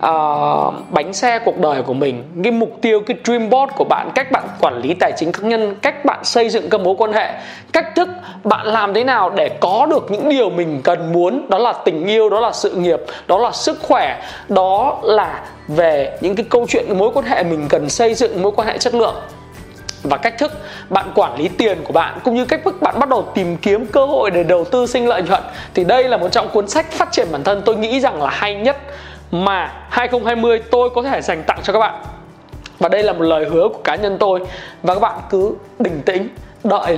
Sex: male